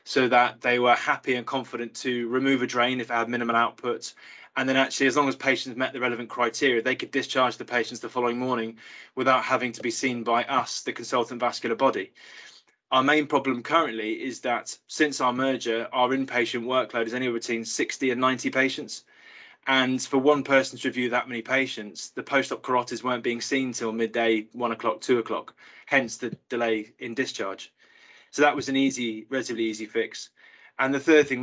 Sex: male